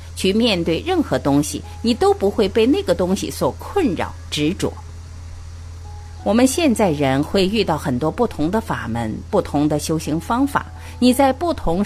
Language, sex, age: Chinese, female, 50-69